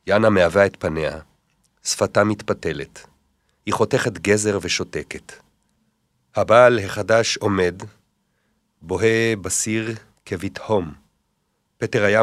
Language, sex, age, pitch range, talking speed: Hebrew, male, 40-59, 90-125 Hz, 90 wpm